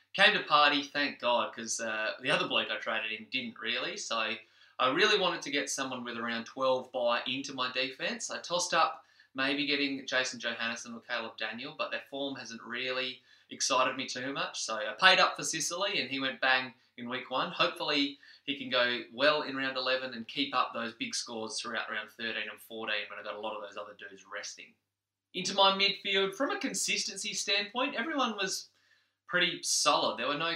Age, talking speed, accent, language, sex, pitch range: 20-39, 205 wpm, Australian, English, male, 115-145 Hz